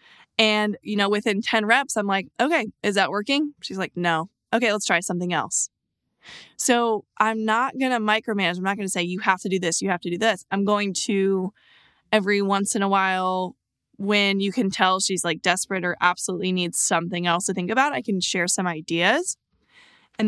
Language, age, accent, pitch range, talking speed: English, 20-39, American, 185-230 Hz, 205 wpm